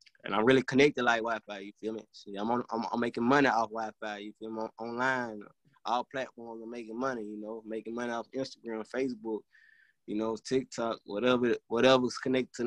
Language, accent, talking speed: English, American, 190 wpm